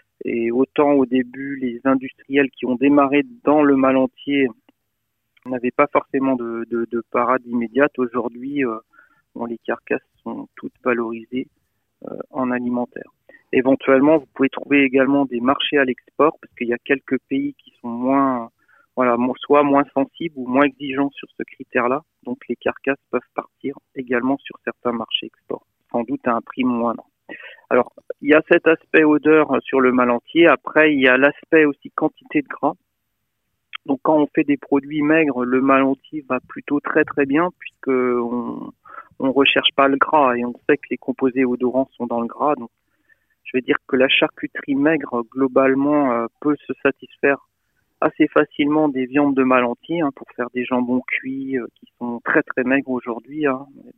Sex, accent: male, French